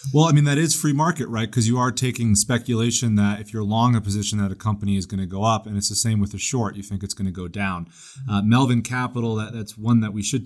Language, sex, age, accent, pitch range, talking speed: English, male, 30-49, American, 100-115 Hz, 280 wpm